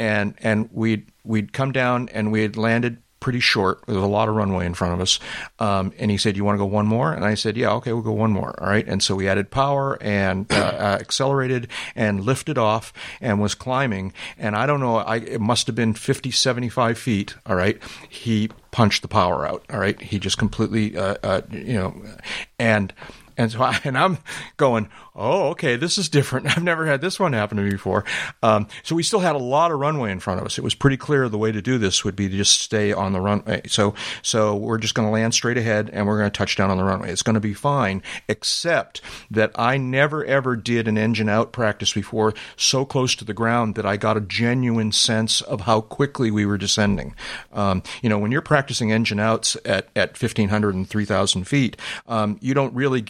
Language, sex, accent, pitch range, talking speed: English, male, American, 105-125 Hz, 230 wpm